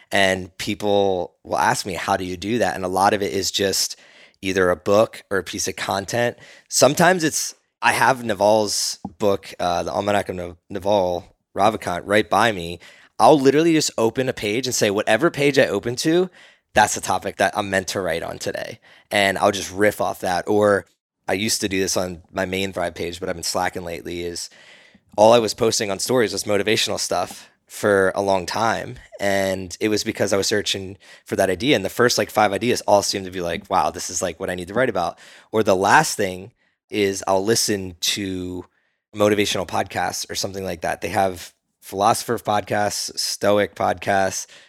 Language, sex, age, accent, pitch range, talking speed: English, male, 20-39, American, 95-105 Hz, 200 wpm